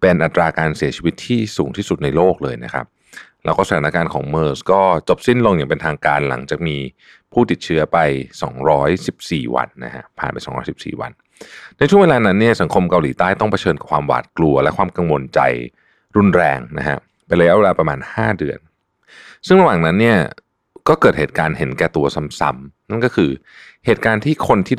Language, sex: Thai, male